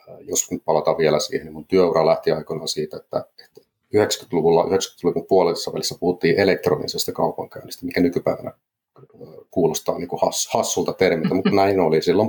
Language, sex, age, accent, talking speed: Finnish, male, 30-49, native, 145 wpm